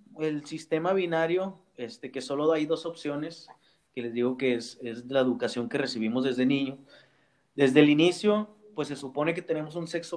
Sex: male